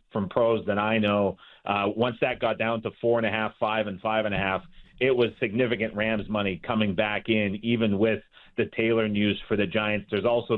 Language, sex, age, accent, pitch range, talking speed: English, male, 40-59, American, 105-135 Hz, 220 wpm